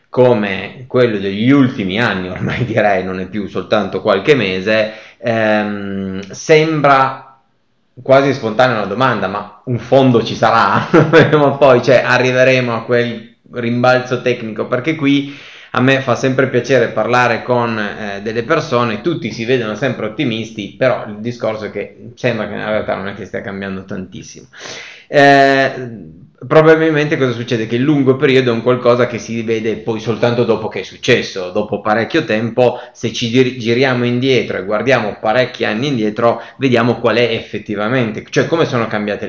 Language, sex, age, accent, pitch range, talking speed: Italian, male, 20-39, native, 105-130 Hz, 155 wpm